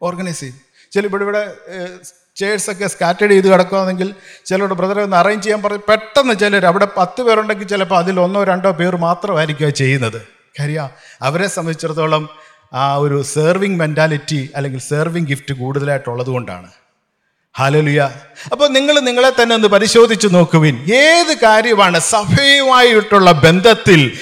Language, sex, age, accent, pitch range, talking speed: Malayalam, male, 50-69, native, 145-215 Hz, 125 wpm